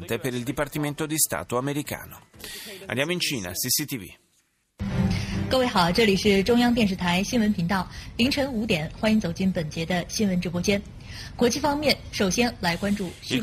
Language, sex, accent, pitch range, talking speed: Italian, male, native, 110-150 Hz, 50 wpm